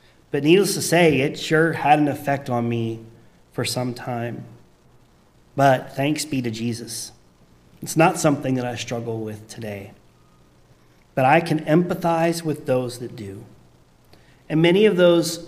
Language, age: English, 30-49